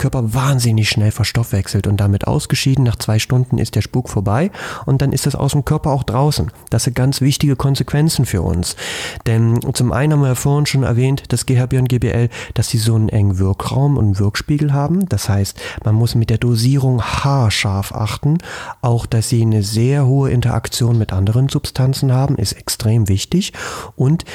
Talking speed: 185 wpm